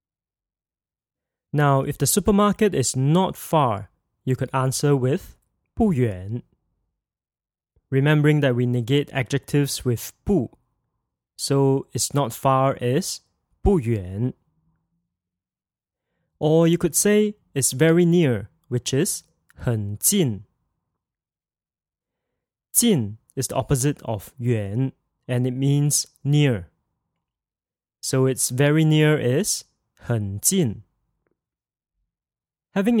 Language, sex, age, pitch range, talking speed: English, male, 20-39, 125-160 Hz, 95 wpm